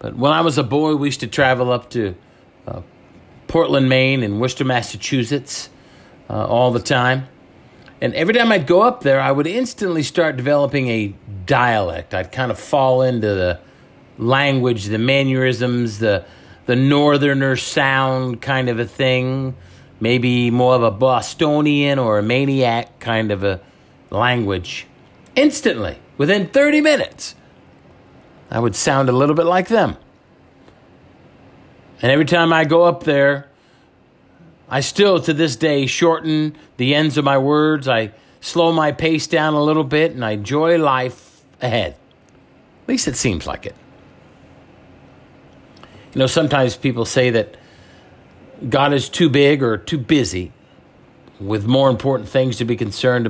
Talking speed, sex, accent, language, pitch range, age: 150 wpm, male, American, English, 120-150 Hz, 50-69